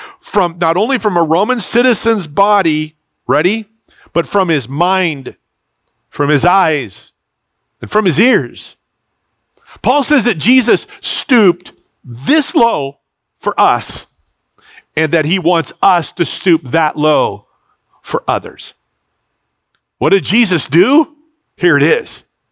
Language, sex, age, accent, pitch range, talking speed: English, male, 50-69, American, 150-215 Hz, 125 wpm